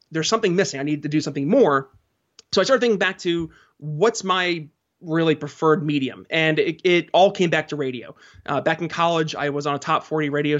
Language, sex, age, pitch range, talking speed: English, male, 20-39, 150-180 Hz, 220 wpm